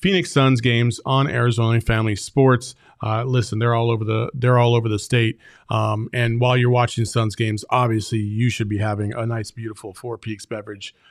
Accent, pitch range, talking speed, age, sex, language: American, 115-140 Hz, 180 wpm, 40-59, male, English